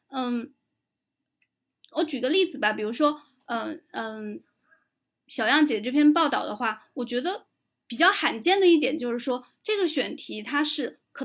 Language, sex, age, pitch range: Chinese, female, 20-39, 250-310 Hz